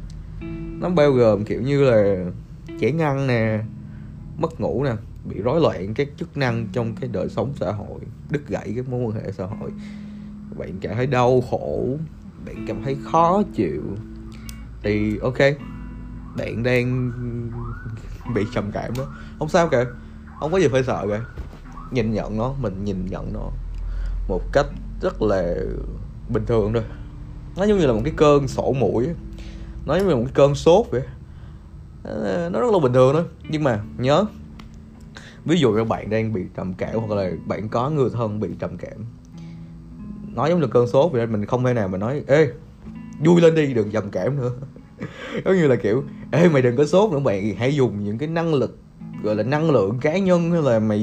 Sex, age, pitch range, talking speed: male, 20-39, 105-145 Hz, 190 wpm